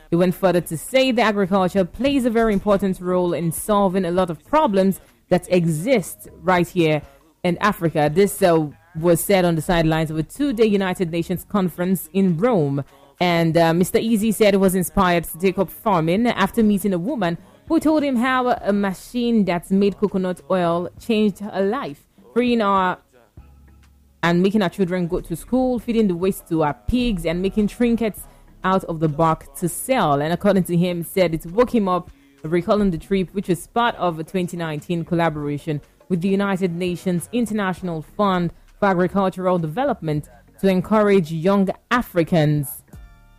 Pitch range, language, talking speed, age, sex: 170-210 Hz, English, 170 wpm, 20-39, female